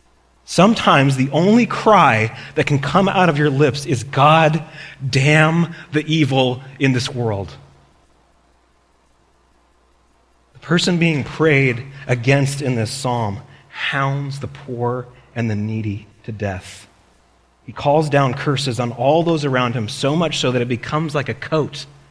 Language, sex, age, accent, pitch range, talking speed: English, male, 30-49, American, 115-145 Hz, 145 wpm